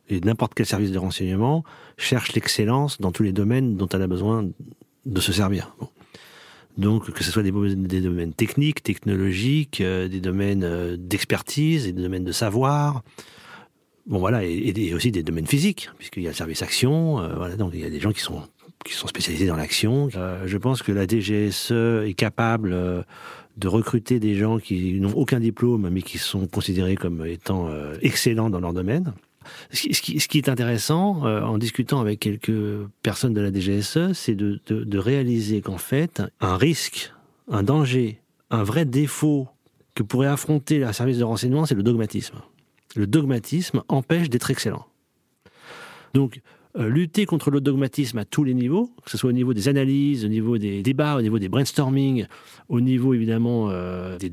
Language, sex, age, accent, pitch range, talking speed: French, male, 40-59, French, 100-135 Hz, 190 wpm